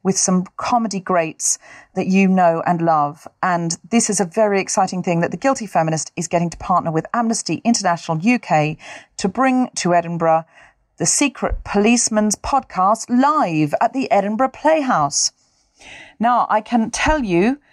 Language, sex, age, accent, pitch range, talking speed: English, female, 40-59, British, 175-260 Hz, 155 wpm